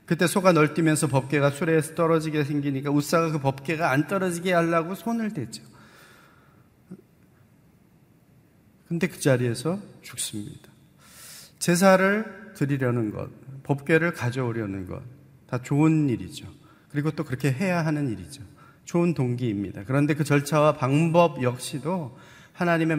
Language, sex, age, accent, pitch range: Korean, male, 40-59, native, 130-160 Hz